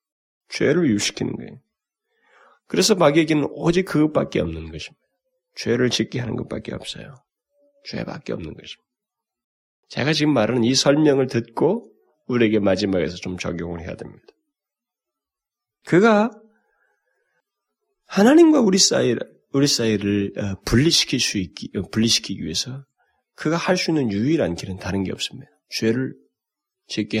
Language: Korean